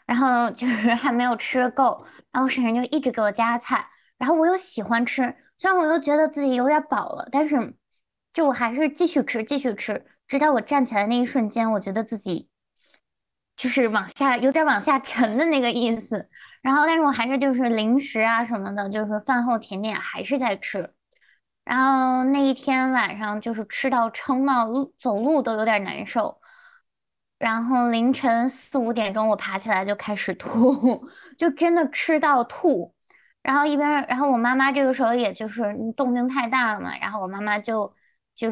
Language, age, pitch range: Chinese, 20-39, 220-275 Hz